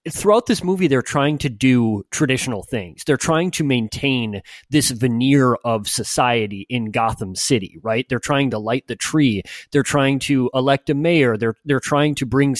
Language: English